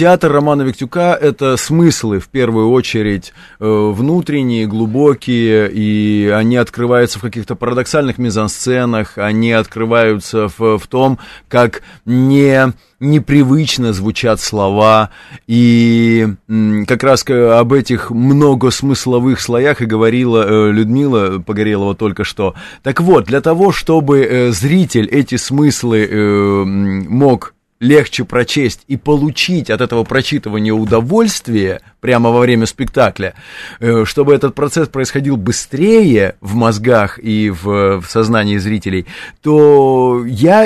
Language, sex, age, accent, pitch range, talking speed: Russian, male, 30-49, native, 110-140 Hz, 105 wpm